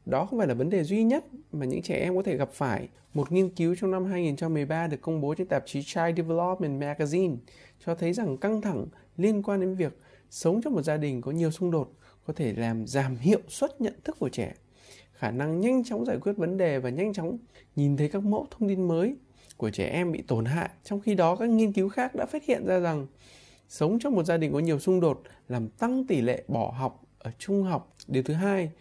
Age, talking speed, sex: 20-39, 240 wpm, male